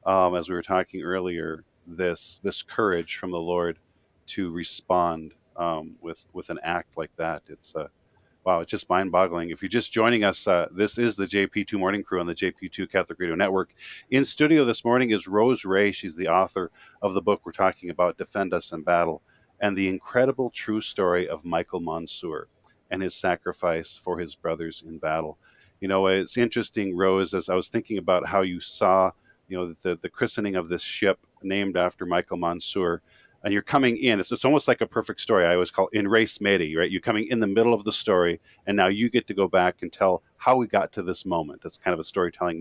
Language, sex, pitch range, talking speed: English, male, 90-105 Hz, 215 wpm